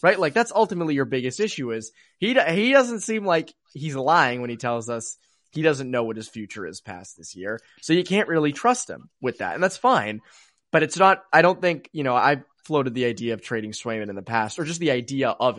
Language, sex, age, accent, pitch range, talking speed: English, male, 20-39, American, 115-160 Hz, 245 wpm